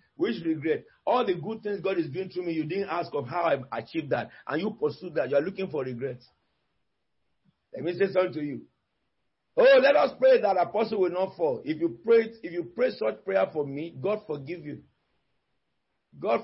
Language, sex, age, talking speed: English, male, 50-69, 210 wpm